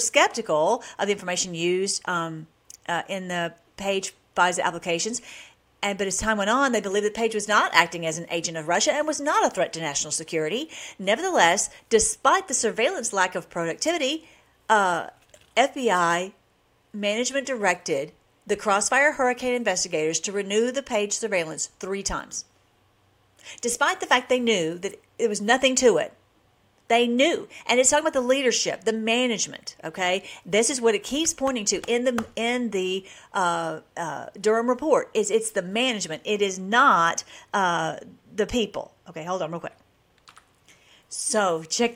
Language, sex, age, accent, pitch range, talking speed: English, female, 50-69, American, 185-245 Hz, 165 wpm